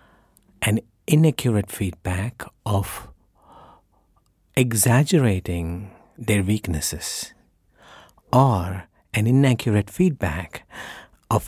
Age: 50-69